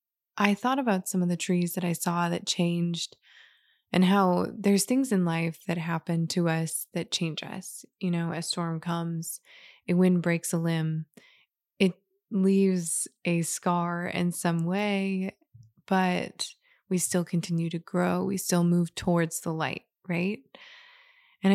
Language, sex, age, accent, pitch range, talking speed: English, female, 20-39, American, 170-195 Hz, 155 wpm